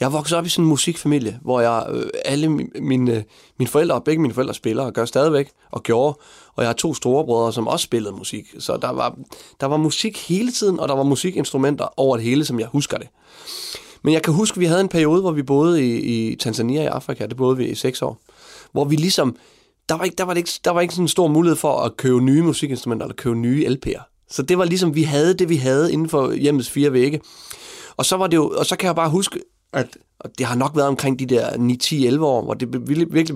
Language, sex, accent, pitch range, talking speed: Danish, male, native, 125-165 Hz, 245 wpm